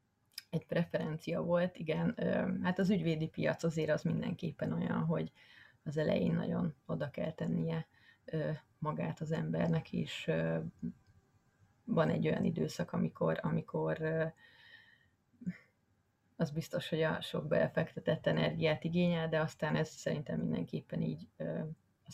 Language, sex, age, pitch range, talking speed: Hungarian, female, 30-49, 150-170 Hz, 120 wpm